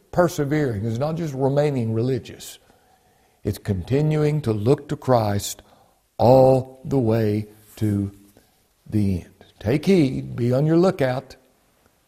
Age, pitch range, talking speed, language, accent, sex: 60-79, 105-135 Hz, 120 wpm, English, American, male